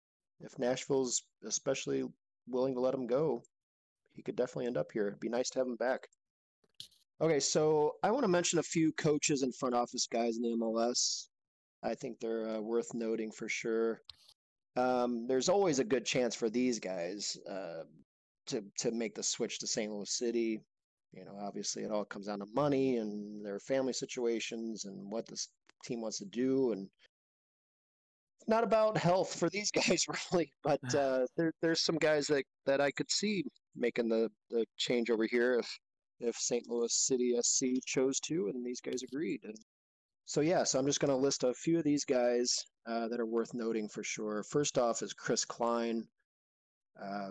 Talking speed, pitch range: 190 wpm, 115-135 Hz